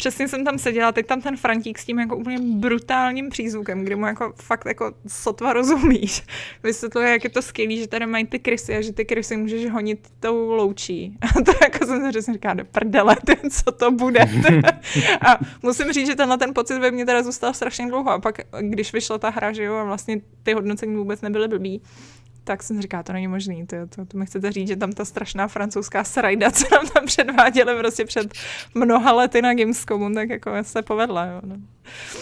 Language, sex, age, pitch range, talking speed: Czech, female, 20-39, 210-255 Hz, 205 wpm